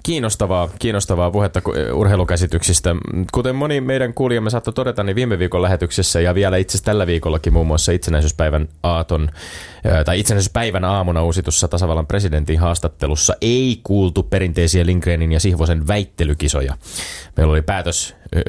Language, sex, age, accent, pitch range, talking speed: Finnish, male, 20-39, native, 80-105 Hz, 135 wpm